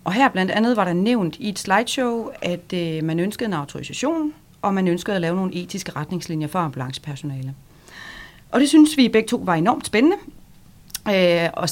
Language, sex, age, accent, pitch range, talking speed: Danish, female, 30-49, native, 160-210 Hz, 180 wpm